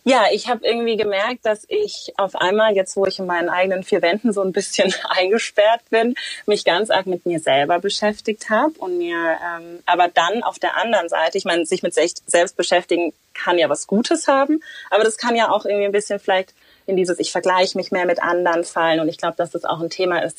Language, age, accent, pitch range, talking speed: German, 30-49, German, 175-220 Hz, 230 wpm